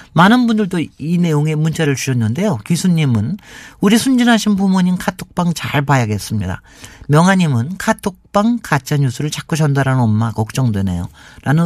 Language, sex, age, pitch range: Korean, male, 50-69, 125-180 Hz